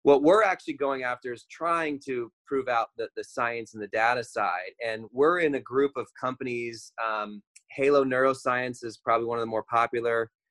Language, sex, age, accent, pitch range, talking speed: English, male, 30-49, American, 115-140 Hz, 195 wpm